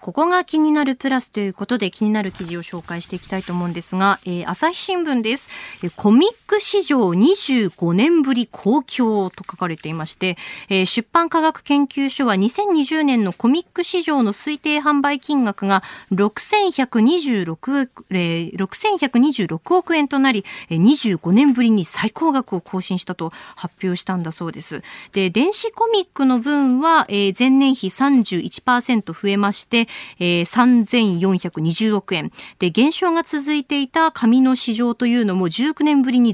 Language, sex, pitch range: Japanese, female, 195-290 Hz